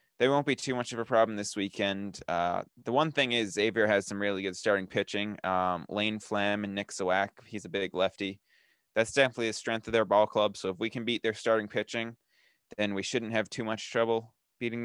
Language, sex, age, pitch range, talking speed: English, male, 20-39, 95-110 Hz, 225 wpm